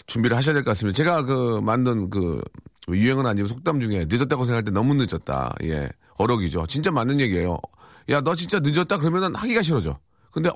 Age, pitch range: 40-59, 95-145 Hz